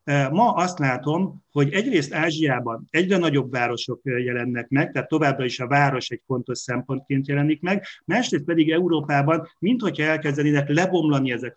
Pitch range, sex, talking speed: 130-155 Hz, male, 145 wpm